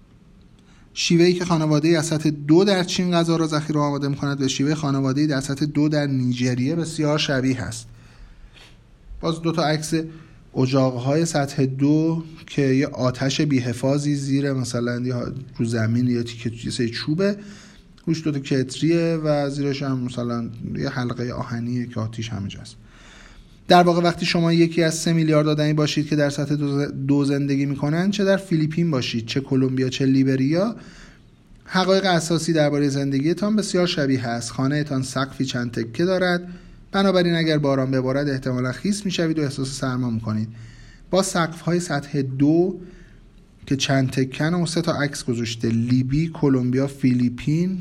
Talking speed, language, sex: 150 wpm, Persian, male